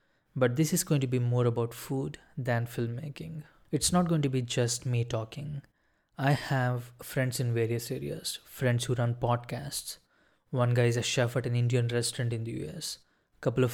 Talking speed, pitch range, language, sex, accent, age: 190 wpm, 120-145 Hz, English, male, Indian, 20-39